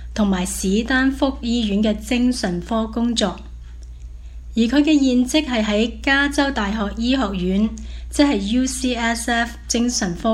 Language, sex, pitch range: Chinese, female, 180-235 Hz